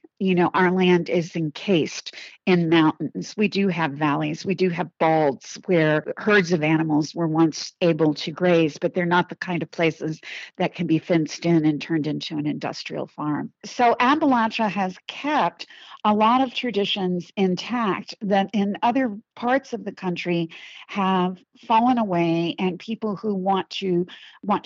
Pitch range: 160-205 Hz